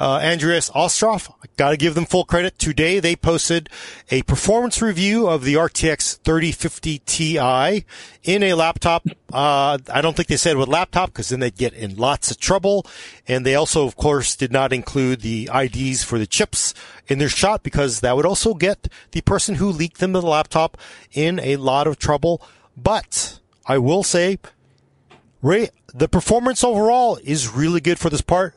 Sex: male